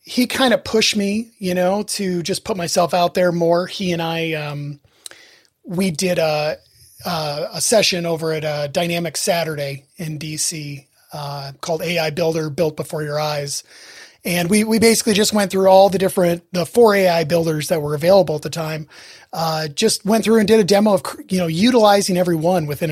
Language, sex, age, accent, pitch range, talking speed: English, male, 30-49, American, 160-200 Hz, 195 wpm